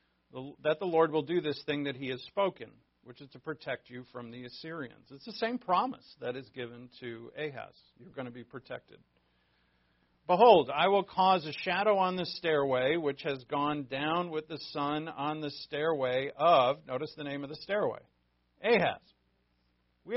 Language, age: English, 50-69